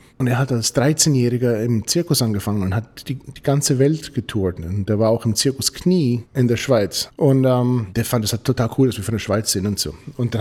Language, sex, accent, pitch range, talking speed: German, male, German, 100-135 Hz, 250 wpm